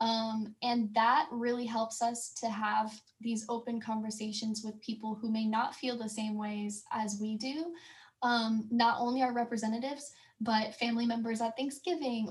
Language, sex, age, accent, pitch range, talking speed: English, female, 10-29, American, 220-250 Hz, 155 wpm